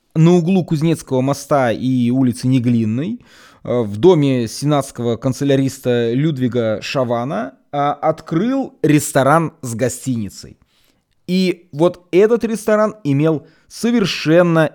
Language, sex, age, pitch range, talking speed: Russian, male, 20-39, 125-165 Hz, 95 wpm